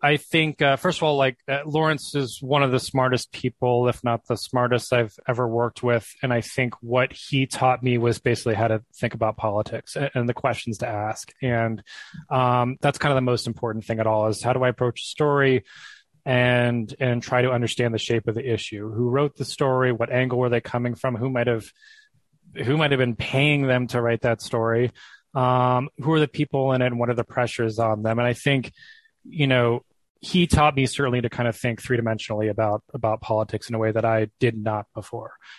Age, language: 20-39, English